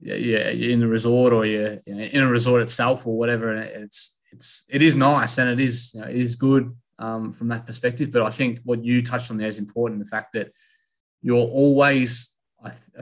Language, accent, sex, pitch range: English, Australian, male, 110-125 Hz